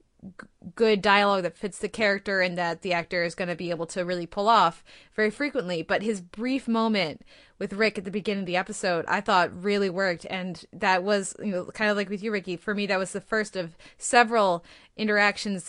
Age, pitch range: 20-39, 185-225 Hz